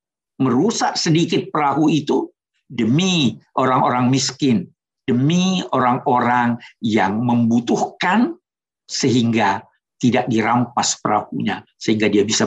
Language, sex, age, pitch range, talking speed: Indonesian, male, 60-79, 120-170 Hz, 85 wpm